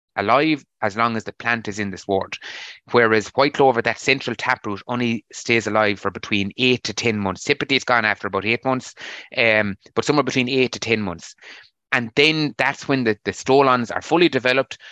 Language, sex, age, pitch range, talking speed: English, male, 30-49, 105-130 Hz, 200 wpm